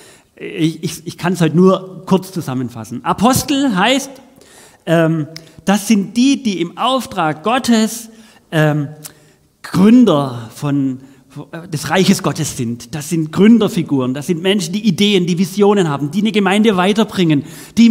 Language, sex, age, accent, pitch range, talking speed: German, male, 40-59, German, 155-230 Hz, 140 wpm